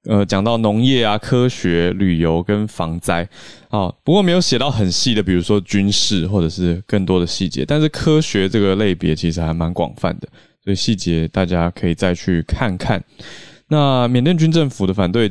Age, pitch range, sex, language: 20-39, 90-115 Hz, male, Chinese